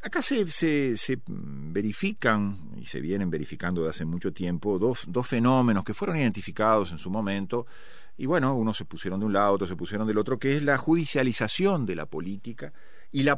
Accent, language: Argentinian, Spanish